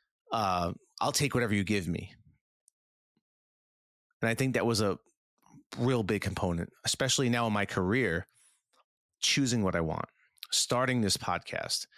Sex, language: male, English